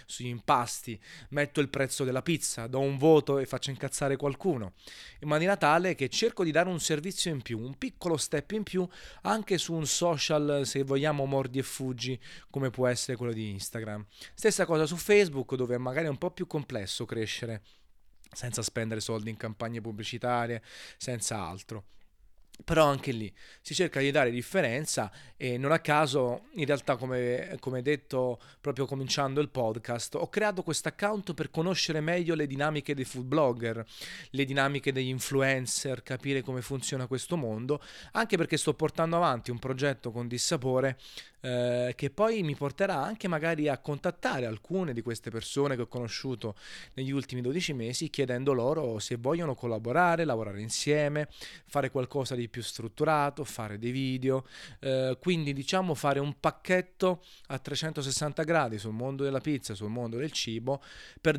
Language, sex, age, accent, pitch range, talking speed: Italian, male, 30-49, native, 125-155 Hz, 165 wpm